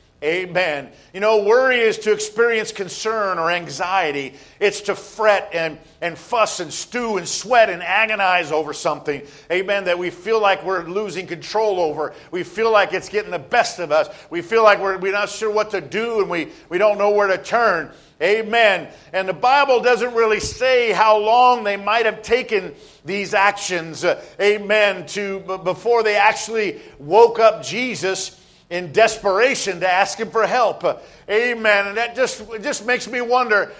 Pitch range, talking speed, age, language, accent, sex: 195-245 Hz, 175 wpm, 50-69, English, American, male